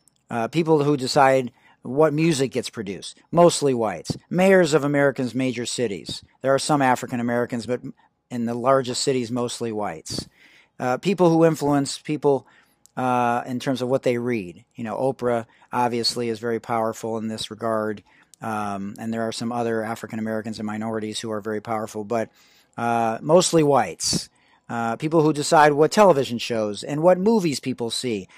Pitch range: 115-170 Hz